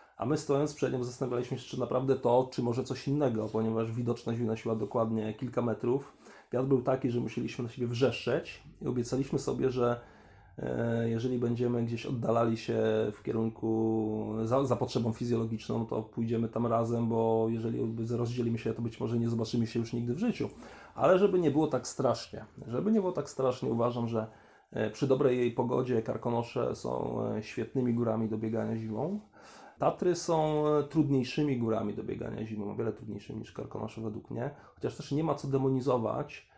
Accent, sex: native, male